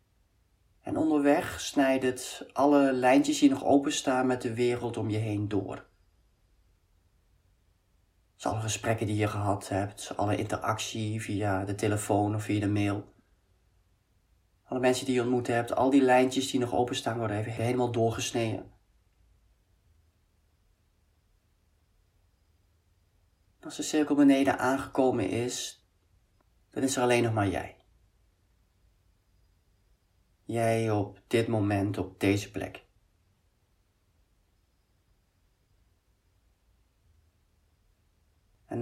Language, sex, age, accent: Dutch, male, 30-49, Dutch